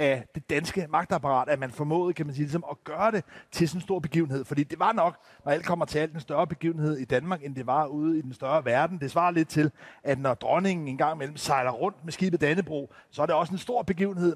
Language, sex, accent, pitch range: Danish, male, native, 140-185 Hz